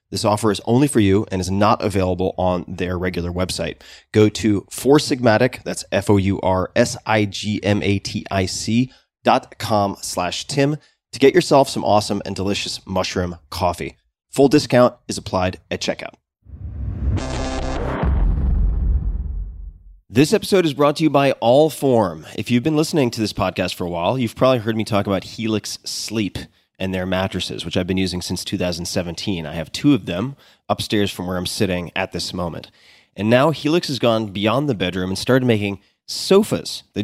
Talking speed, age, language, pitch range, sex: 160 wpm, 30-49, English, 90-120 Hz, male